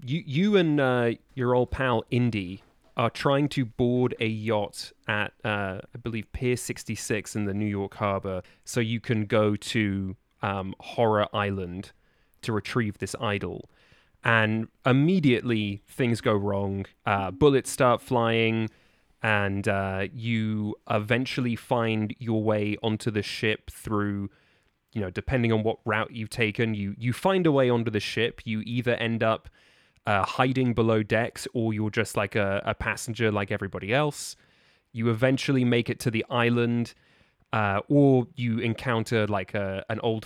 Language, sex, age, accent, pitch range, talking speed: English, male, 30-49, British, 105-125 Hz, 155 wpm